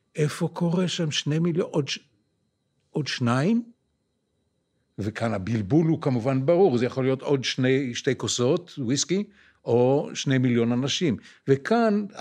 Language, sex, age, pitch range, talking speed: Hebrew, male, 60-79, 115-140 Hz, 135 wpm